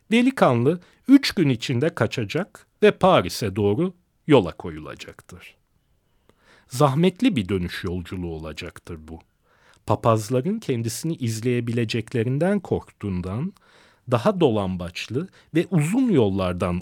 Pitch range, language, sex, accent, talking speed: 105-175 Hz, Turkish, male, native, 90 wpm